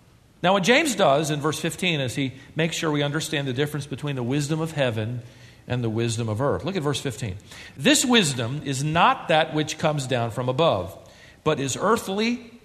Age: 50-69